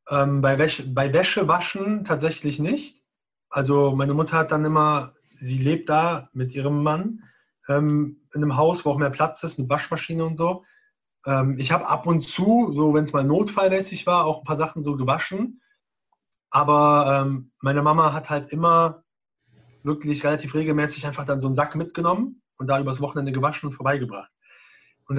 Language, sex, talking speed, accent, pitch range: German, male, 175 wpm, German, 140-175 Hz